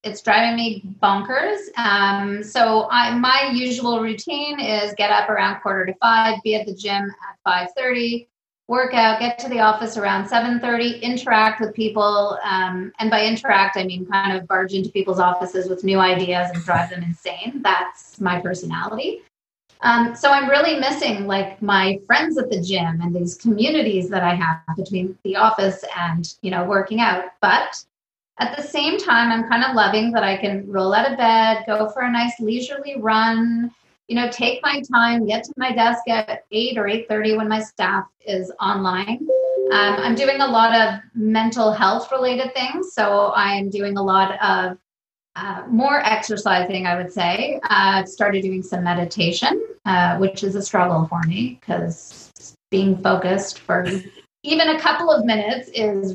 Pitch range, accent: 190-235 Hz, American